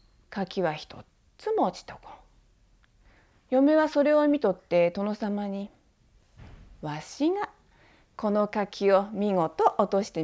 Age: 40-59